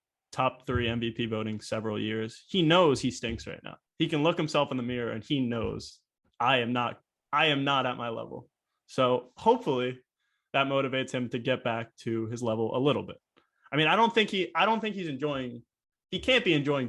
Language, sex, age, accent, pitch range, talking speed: English, male, 20-39, American, 120-155 Hz, 215 wpm